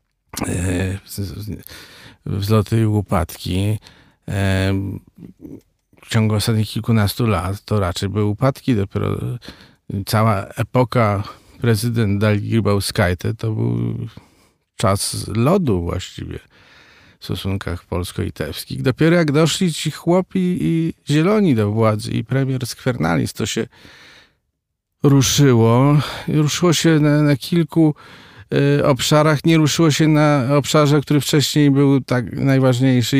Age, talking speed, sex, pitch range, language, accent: 40-59, 100 wpm, male, 100-135 Hz, Polish, native